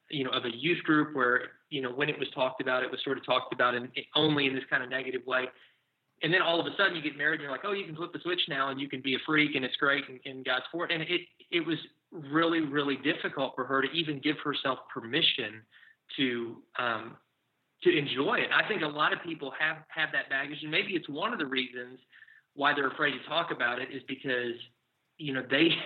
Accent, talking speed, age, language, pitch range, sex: American, 255 wpm, 30-49, English, 135-155 Hz, male